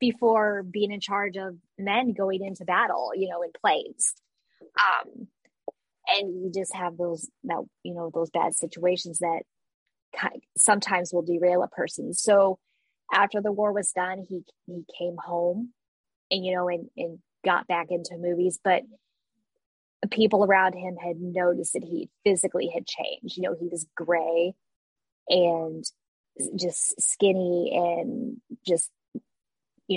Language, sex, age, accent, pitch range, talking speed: English, female, 20-39, American, 175-205 Hz, 145 wpm